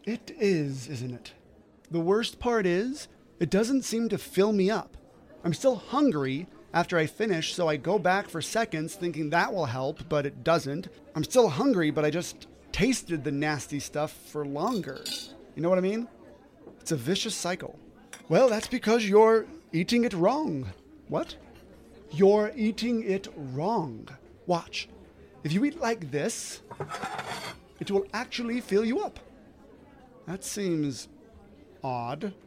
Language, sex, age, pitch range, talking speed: English, male, 30-49, 150-225 Hz, 150 wpm